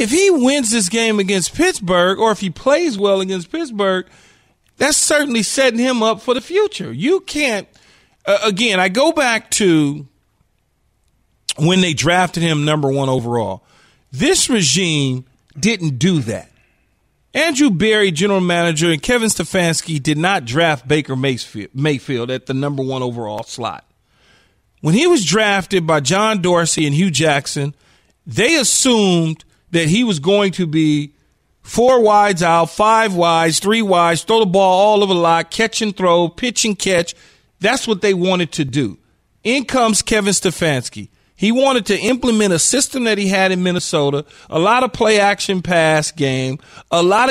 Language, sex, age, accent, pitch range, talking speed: English, male, 40-59, American, 150-220 Hz, 160 wpm